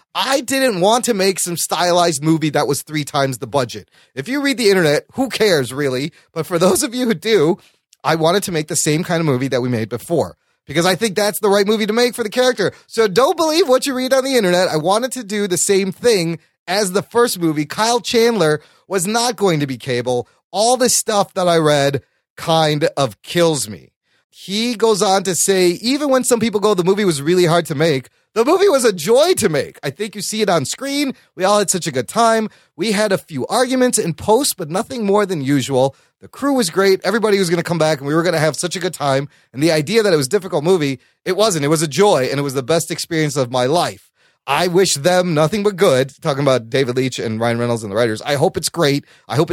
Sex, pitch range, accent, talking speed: male, 145-215 Hz, American, 250 wpm